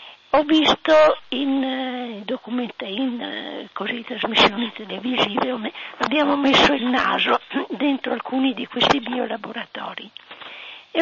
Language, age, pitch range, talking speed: Italian, 50-69, 235-300 Hz, 100 wpm